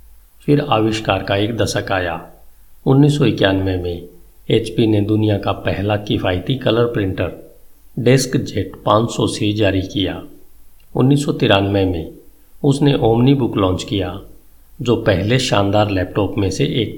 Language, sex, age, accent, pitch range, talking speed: Hindi, male, 50-69, native, 95-125 Hz, 130 wpm